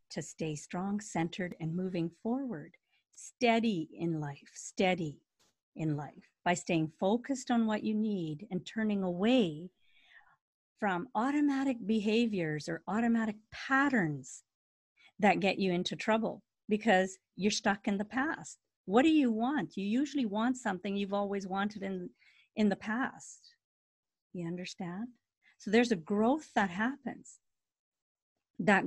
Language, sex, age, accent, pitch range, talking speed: English, female, 50-69, American, 175-230 Hz, 135 wpm